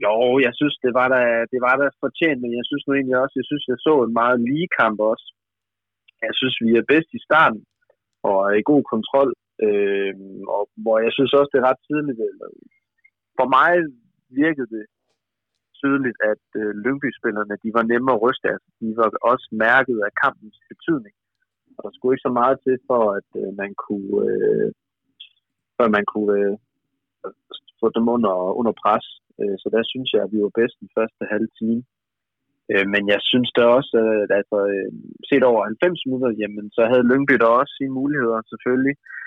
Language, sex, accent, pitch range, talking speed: Danish, male, native, 105-130 Hz, 180 wpm